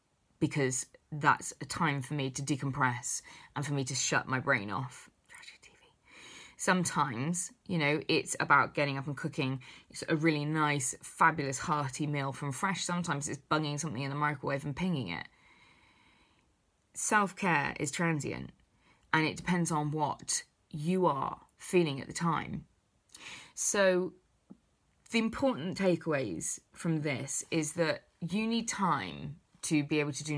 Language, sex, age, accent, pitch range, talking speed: English, female, 20-39, British, 140-170 Hz, 150 wpm